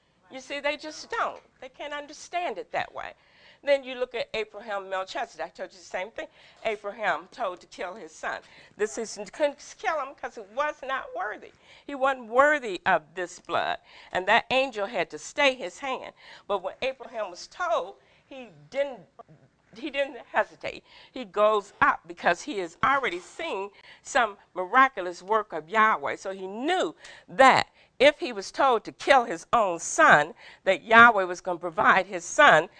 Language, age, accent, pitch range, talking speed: English, 50-69, American, 180-280 Hz, 175 wpm